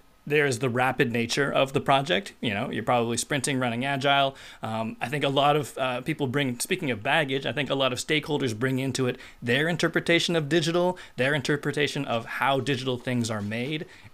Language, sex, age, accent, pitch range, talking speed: English, male, 30-49, American, 125-155 Hz, 205 wpm